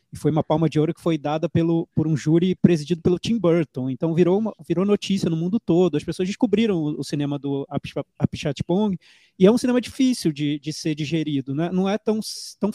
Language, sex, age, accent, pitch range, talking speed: Portuguese, male, 20-39, Brazilian, 160-215 Hz, 215 wpm